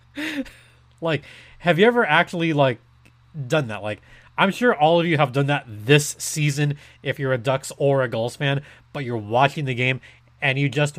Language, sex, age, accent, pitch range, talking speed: English, male, 30-49, American, 115-165 Hz, 190 wpm